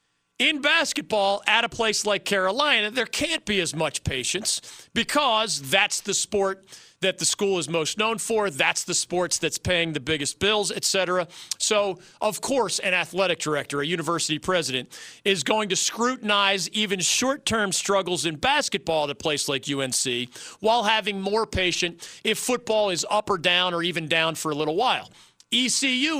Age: 40-59